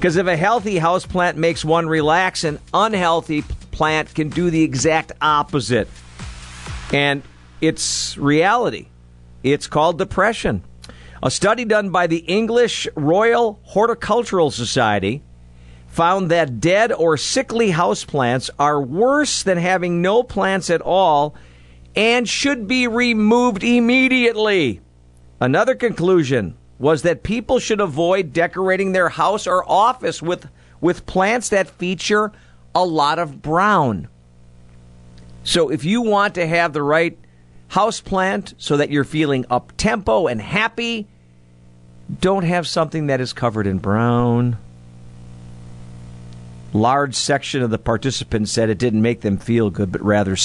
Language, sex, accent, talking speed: English, male, American, 135 wpm